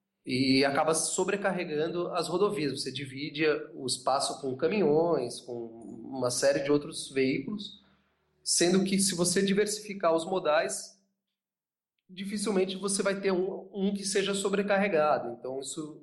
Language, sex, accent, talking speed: Portuguese, male, Brazilian, 125 wpm